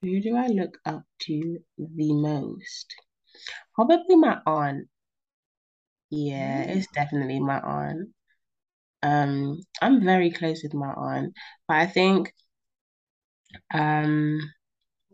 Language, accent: English, British